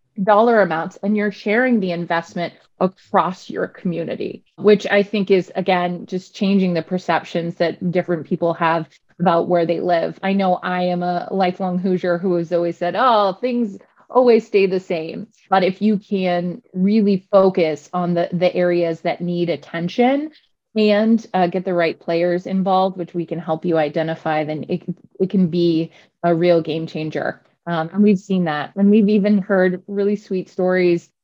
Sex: female